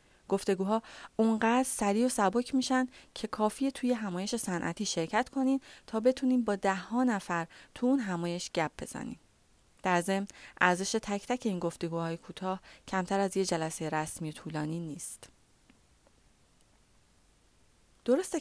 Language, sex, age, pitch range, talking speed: Persian, female, 30-49, 165-205 Hz, 125 wpm